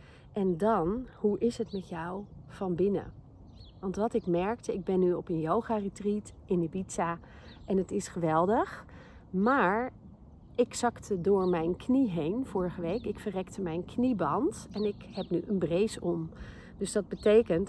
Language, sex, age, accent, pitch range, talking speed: Dutch, female, 40-59, Dutch, 180-220 Hz, 165 wpm